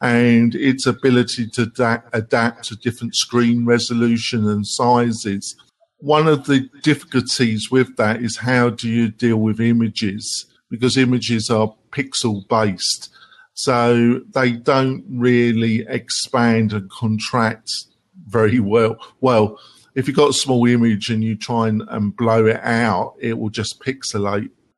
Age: 50-69